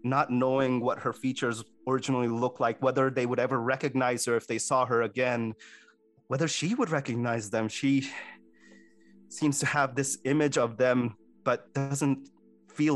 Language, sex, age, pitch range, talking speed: English, male, 30-49, 110-140 Hz, 160 wpm